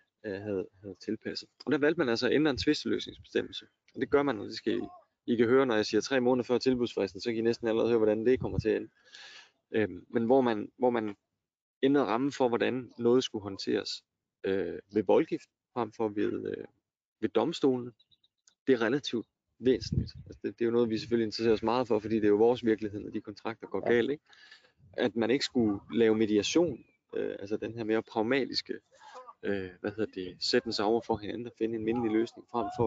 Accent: native